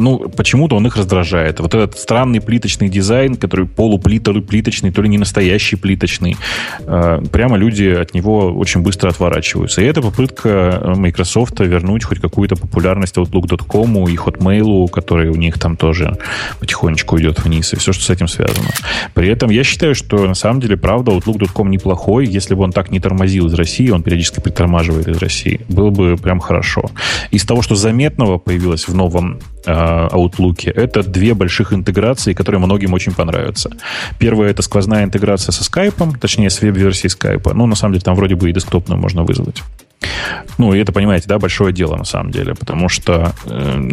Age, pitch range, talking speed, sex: 20-39, 90-110 Hz, 175 wpm, male